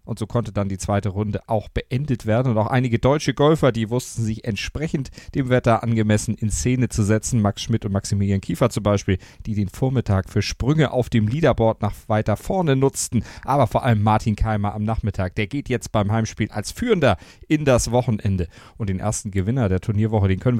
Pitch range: 105-125 Hz